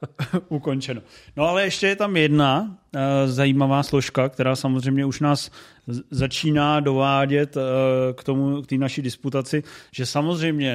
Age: 30-49